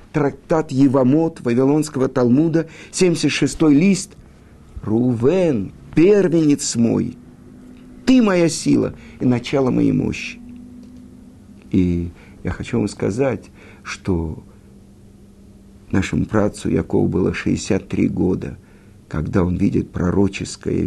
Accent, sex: native, male